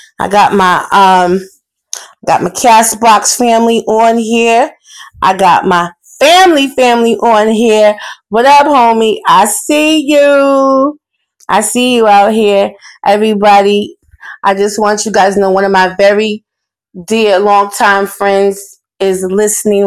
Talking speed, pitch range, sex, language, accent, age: 135 wpm, 190-230 Hz, female, English, American, 30-49